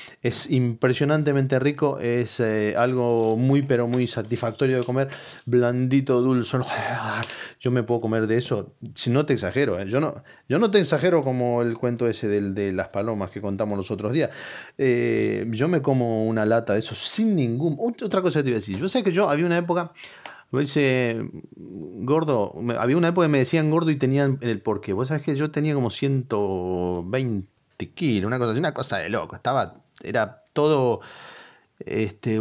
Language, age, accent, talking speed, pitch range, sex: Spanish, 30-49, Argentinian, 190 wpm, 115-150 Hz, male